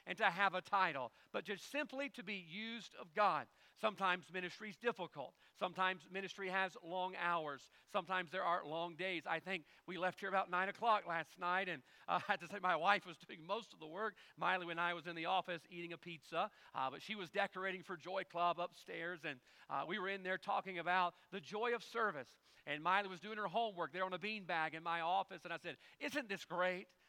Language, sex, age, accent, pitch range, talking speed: English, male, 40-59, American, 165-210 Hz, 225 wpm